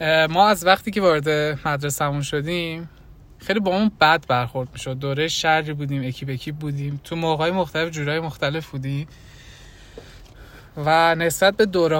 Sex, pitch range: male, 135-175 Hz